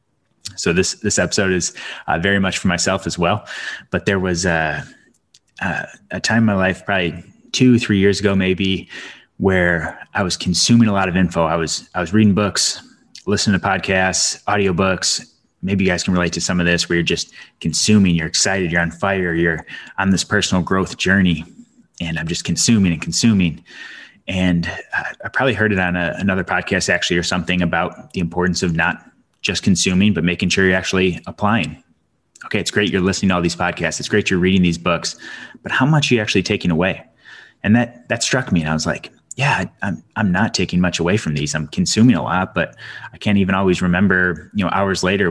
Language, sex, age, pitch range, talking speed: English, male, 20-39, 85-100 Hz, 210 wpm